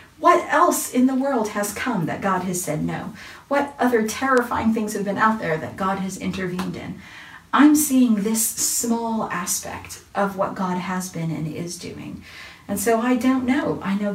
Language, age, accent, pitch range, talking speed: English, 40-59, American, 195-245 Hz, 190 wpm